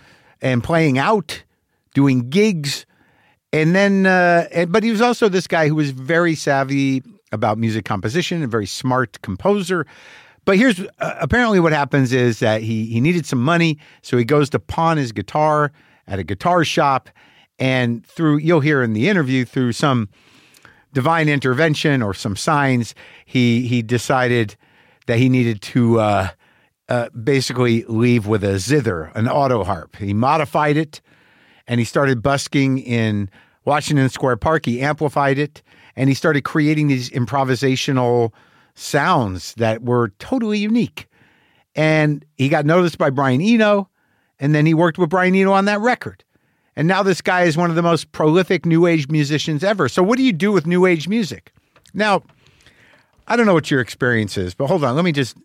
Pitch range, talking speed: 120-170 Hz, 170 wpm